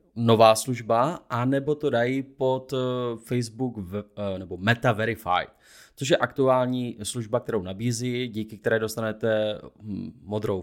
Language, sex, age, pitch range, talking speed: Czech, male, 20-39, 110-140 Hz, 115 wpm